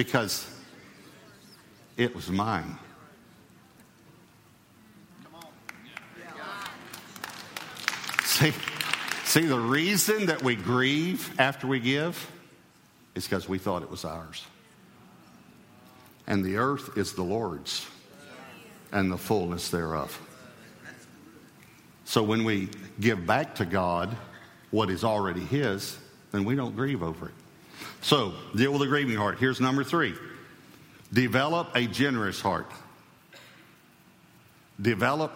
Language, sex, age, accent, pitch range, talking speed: English, male, 50-69, American, 105-150 Hz, 105 wpm